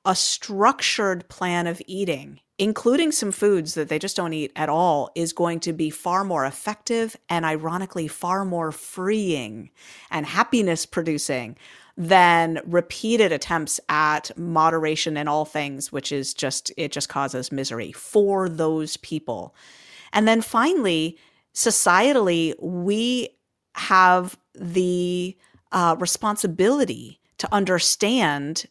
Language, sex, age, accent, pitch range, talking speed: English, female, 40-59, American, 155-195 Hz, 125 wpm